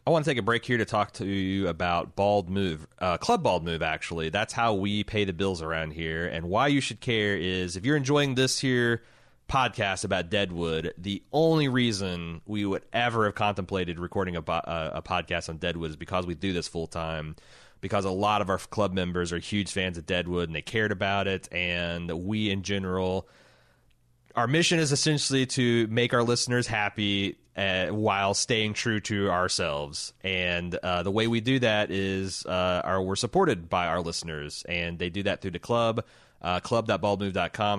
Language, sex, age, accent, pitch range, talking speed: English, male, 30-49, American, 90-115 Hz, 195 wpm